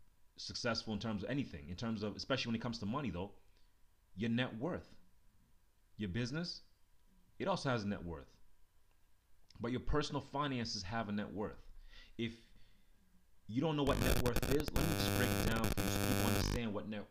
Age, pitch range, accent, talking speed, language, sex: 30-49, 90-115 Hz, American, 195 wpm, English, male